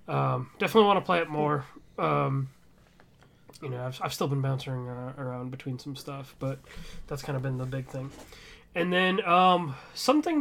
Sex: male